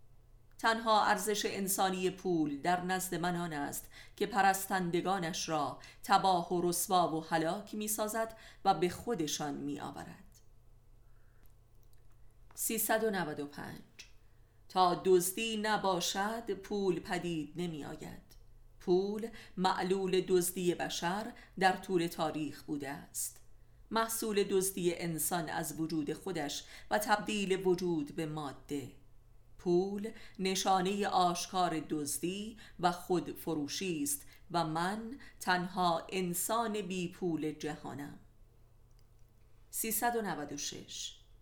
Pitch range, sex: 140-190 Hz, female